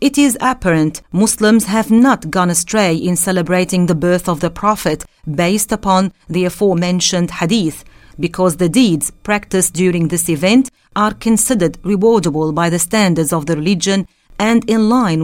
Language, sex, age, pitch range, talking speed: English, female, 40-59, 165-215 Hz, 155 wpm